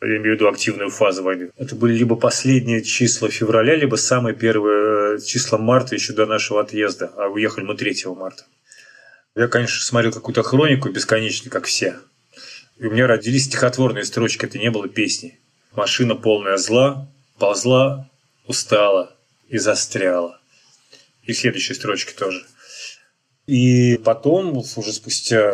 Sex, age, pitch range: male, 20-39, 105-130 Hz